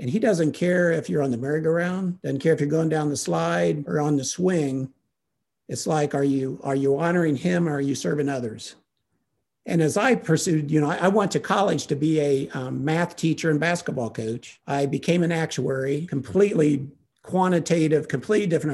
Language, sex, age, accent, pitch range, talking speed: English, male, 50-69, American, 140-175 Hz, 195 wpm